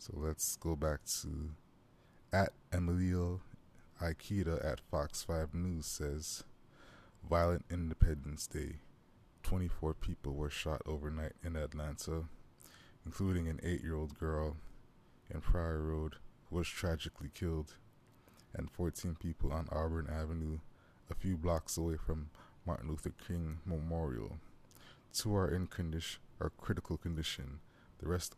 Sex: male